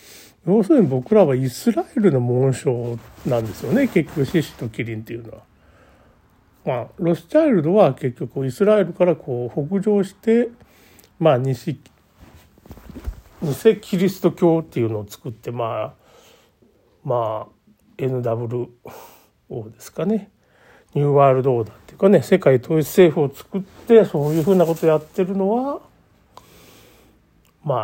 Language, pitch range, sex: Japanese, 120-185 Hz, male